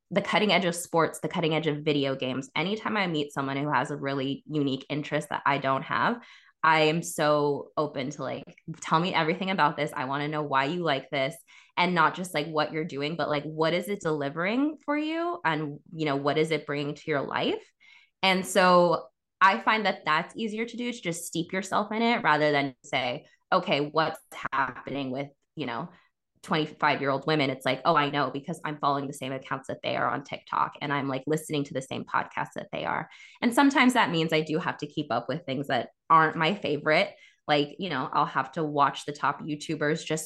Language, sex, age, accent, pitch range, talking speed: English, female, 20-39, American, 145-175 Hz, 225 wpm